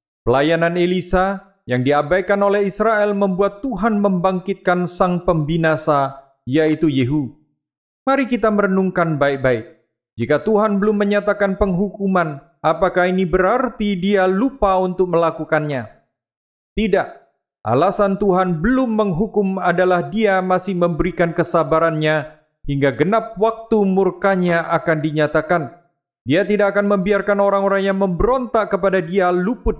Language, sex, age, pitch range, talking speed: Indonesian, male, 40-59, 155-205 Hz, 110 wpm